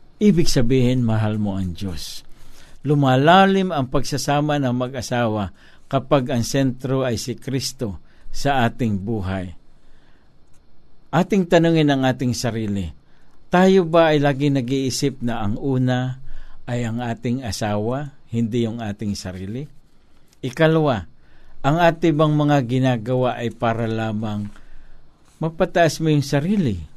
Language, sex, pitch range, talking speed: Filipino, male, 105-140 Hz, 120 wpm